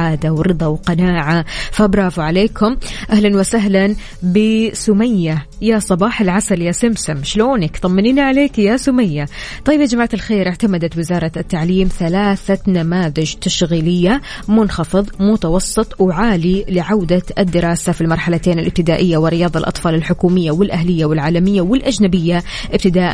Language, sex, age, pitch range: Arabic, female, 20-39, 165-205 Hz